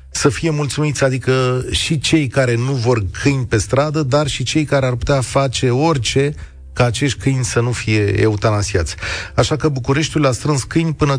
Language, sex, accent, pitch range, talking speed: Romanian, male, native, 105-145 Hz, 180 wpm